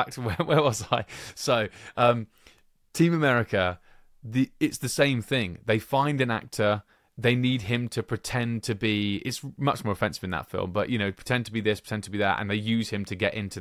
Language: English